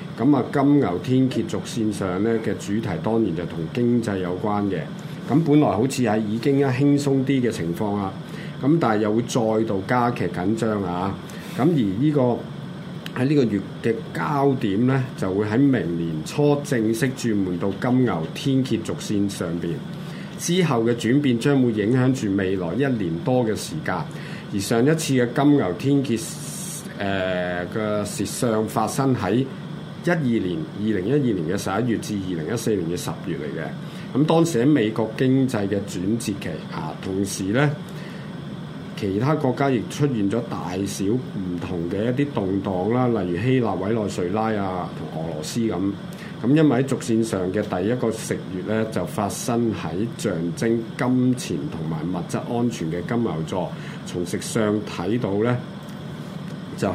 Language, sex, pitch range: Chinese, male, 100-140 Hz